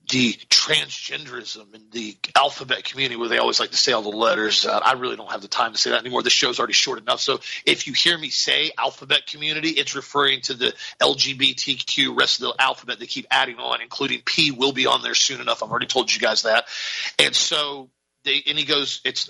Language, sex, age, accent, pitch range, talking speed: English, male, 40-59, American, 135-160 Hz, 245 wpm